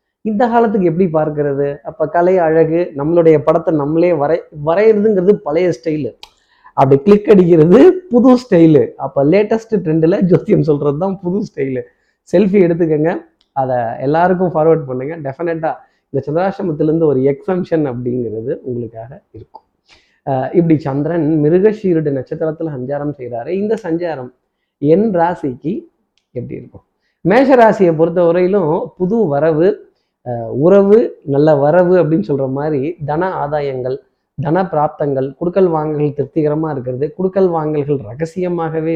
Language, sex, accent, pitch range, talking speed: Tamil, male, native, 140-180 Hz, 115 wpm